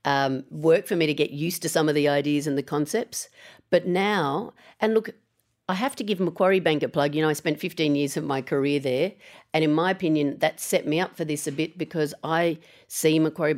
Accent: Australian